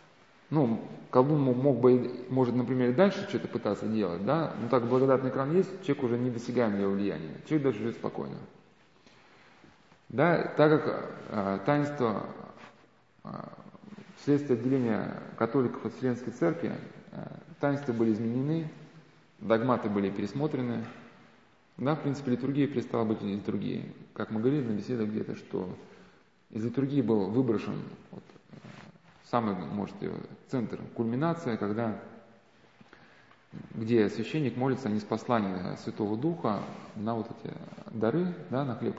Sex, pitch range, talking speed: male, 110-145 Hz, 130 wpm